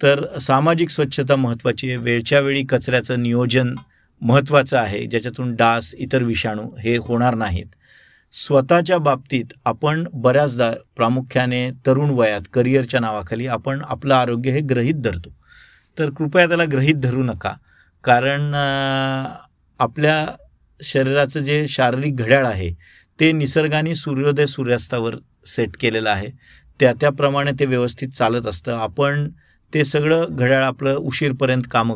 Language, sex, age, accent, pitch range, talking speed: Marathi, male, 50-69, native, 120-145 Hz, 125 wpm